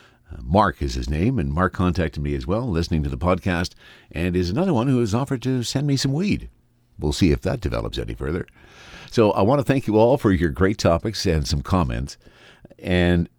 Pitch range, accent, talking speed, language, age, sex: 75-110 Hz, American, 215 wpm, English, 50-69, male